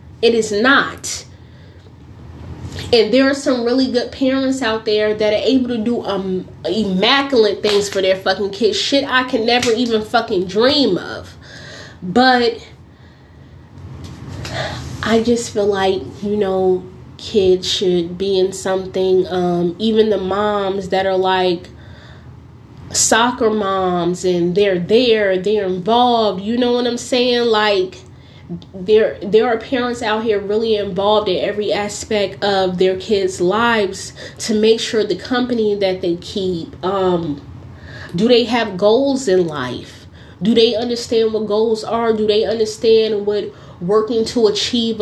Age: 20-39